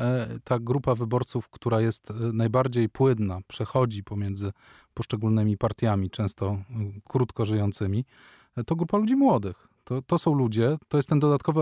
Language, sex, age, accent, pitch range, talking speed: Polish, male, 20-39, native, 110-135 Hz, 135 wpm